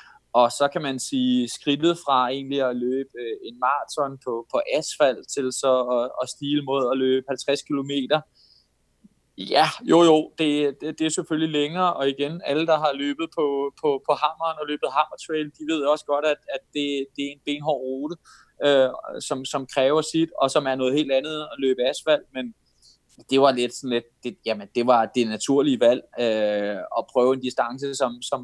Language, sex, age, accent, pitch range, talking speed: Danish, male, 20-39, native, 130-155 Hz, 195 wpm